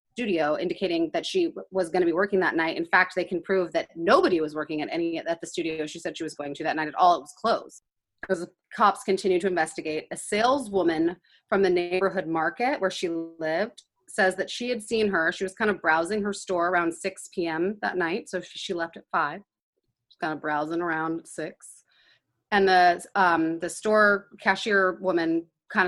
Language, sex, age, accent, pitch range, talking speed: English, female, 30-49, American, 165-200 Hz, 210 wpm